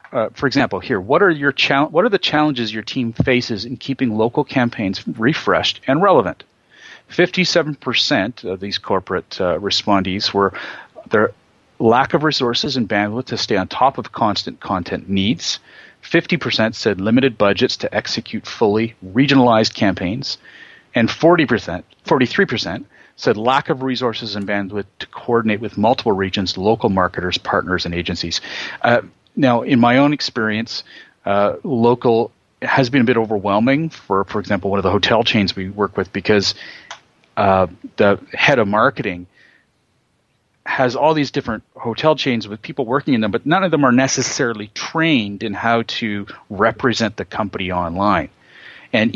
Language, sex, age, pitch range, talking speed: English, male, 40-59, 100-130 Hz, 155 wpm